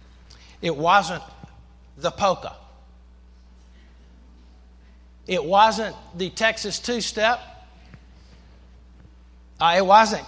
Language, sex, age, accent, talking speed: English, male, 50-69, American, 75 wpm